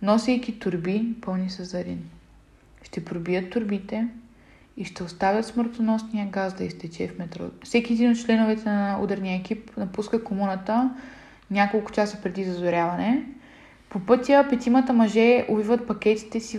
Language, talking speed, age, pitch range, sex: Bulgarian, 135 wpm, 20-39, 195-235 Hz, female